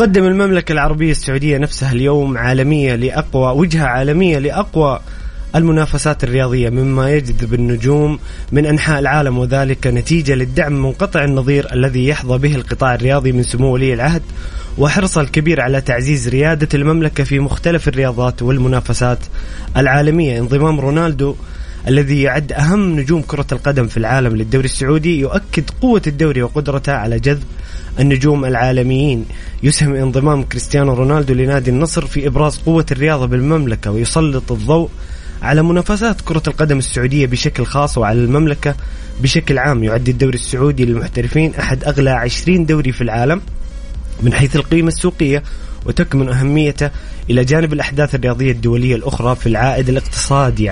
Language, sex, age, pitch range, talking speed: Arabic, male, 20-39, 125-150 Hz, 135 wpm